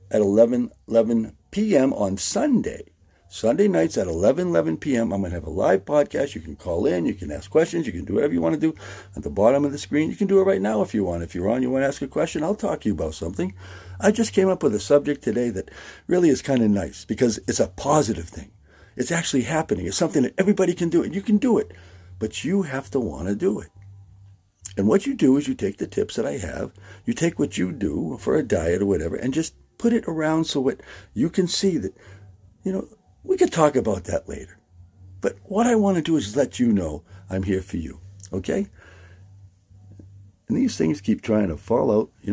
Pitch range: 95-145 Hz